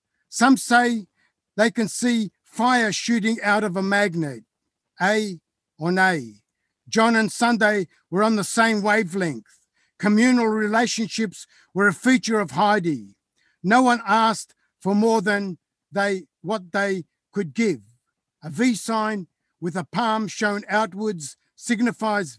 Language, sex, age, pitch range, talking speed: English, male, 60-79, 180-230 Hz, 130 wpm